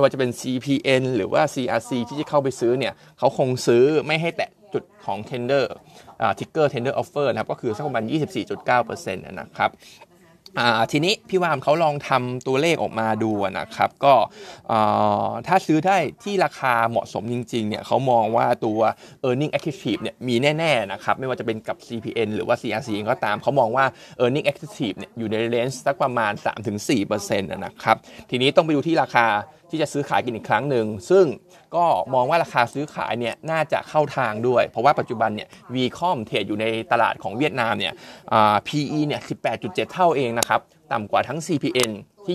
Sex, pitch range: male, 115-150 Hz